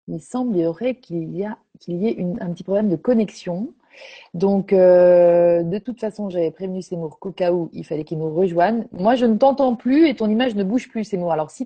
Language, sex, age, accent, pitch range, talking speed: French, female, 30-49, French, 165-220 Hz, 215 wpm